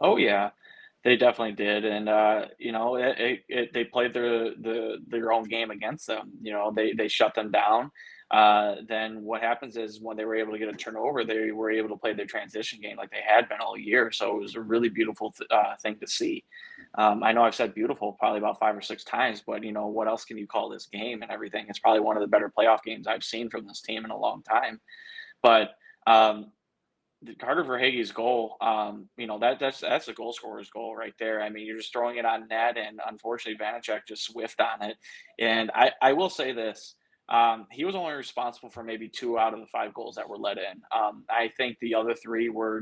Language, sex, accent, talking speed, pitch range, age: English, male, American, 235 wpm, 110-115 Hz, 20-39